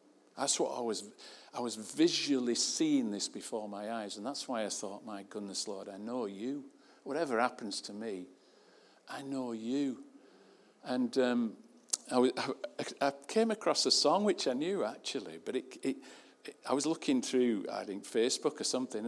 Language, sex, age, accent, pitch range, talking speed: English, male, 50-69, British, 105-135 Hz, 165 wpm